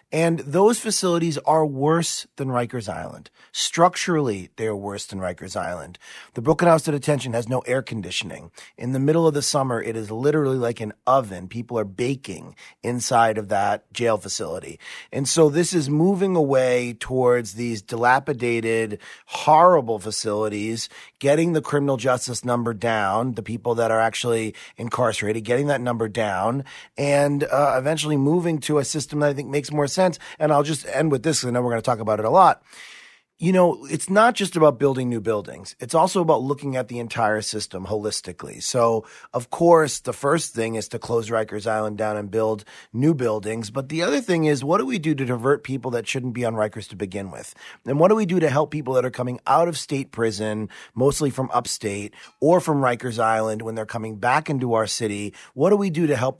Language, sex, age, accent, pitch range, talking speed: English, male, 30-49, American, 115-150 Hz, 200 wpm